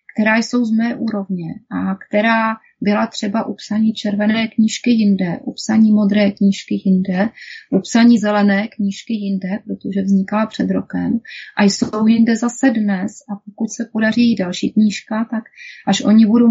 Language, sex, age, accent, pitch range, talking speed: Czech, female, 30-49, native, 200-230 Hz, 150 wpm